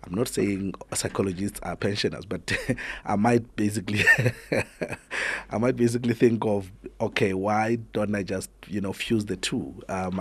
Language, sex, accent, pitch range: English, male, South African, 95-110 Hz